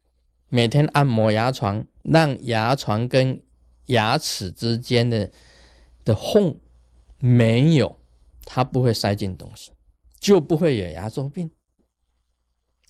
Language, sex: Chinese, male